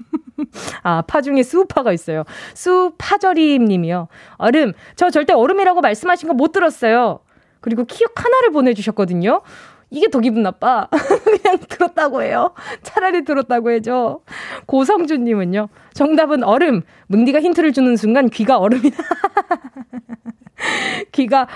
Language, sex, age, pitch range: Korean, female, 20-39, 220-340 Hz